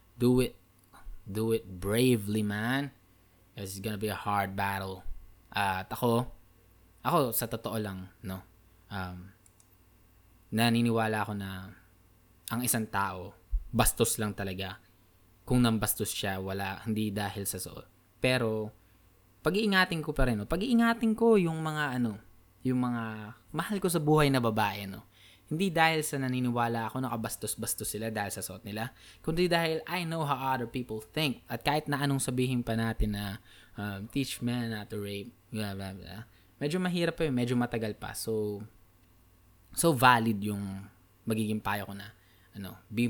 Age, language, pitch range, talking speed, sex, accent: 20-39, Filipino, 95-125 Hz, 155 wpm, male, native